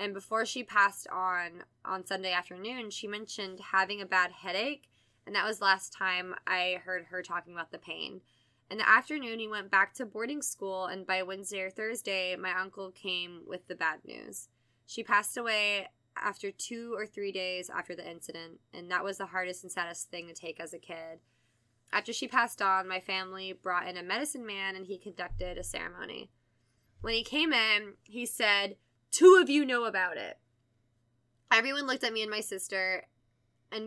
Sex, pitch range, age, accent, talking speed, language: female, 180-220 Hz, 20-39, American, 190 wpm, English